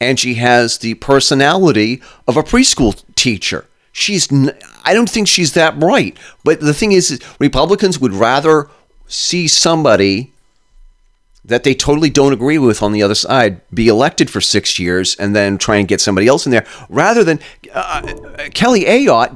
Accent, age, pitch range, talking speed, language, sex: American, 40-59, 110-155 Hz, 175 wpm, English, male